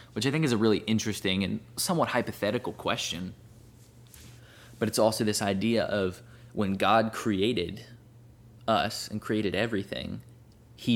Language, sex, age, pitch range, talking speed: English, male, 20-39, 100-120 Hz, 135 wpm